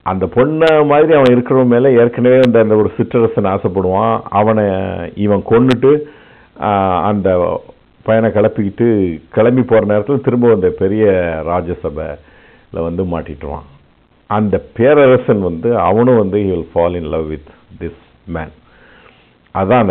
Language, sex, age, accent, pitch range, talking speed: Tamil, male, 50-69, native, 95-120 Hz, 120 wpm